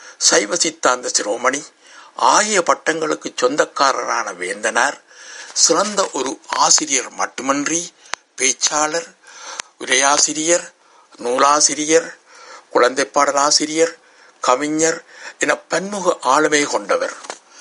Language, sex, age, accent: Tamil, male, 60-79, native